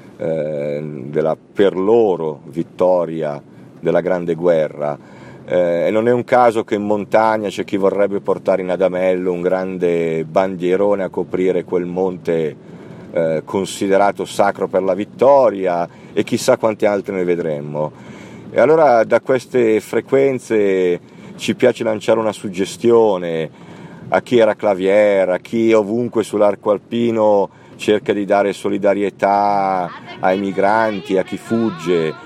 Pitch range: 90-110 Hz